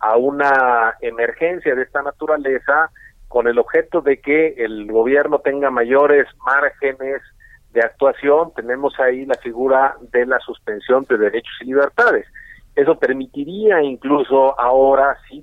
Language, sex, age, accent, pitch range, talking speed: Spanish, male, 40-59, Mexican, 130-185 Hz, 130 wpm